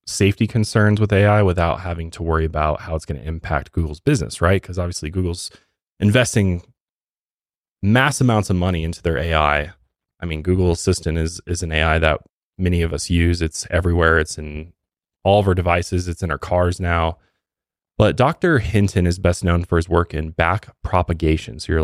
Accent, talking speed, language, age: American, 185 wpm, English, 20-39